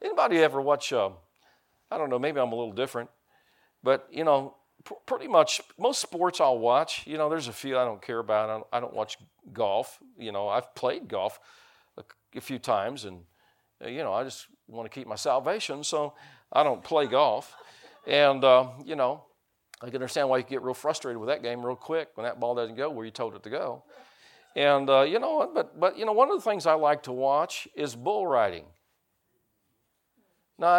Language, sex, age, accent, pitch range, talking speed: English, male, 50-69, American, 120-160 Hz, 210 wpm